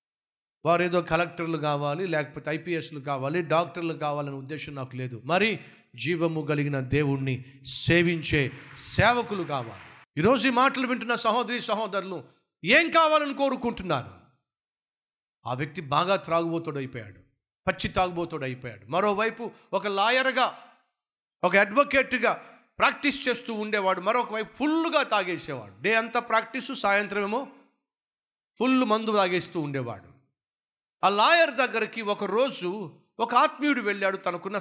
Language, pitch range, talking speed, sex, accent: Telugu, 150-220 Hz, 110 wpm, male, native